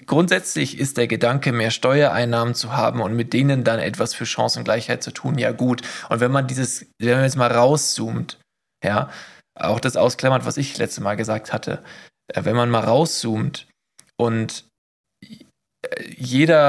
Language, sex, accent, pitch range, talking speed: German, male, German, 120-140 Hz, 160 wpm